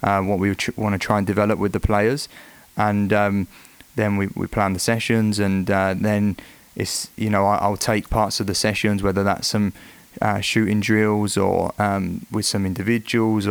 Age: 20-39